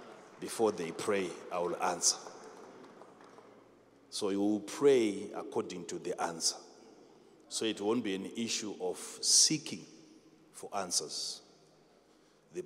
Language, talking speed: English, 120 wpm